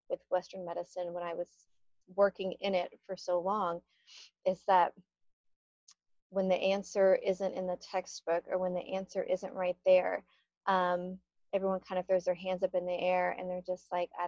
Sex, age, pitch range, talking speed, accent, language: female, 30-49, 180-195 Hz, 185 wpm, American, English